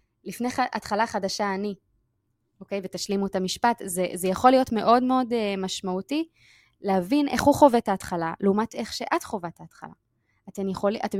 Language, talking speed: Hebrew, 160 wpm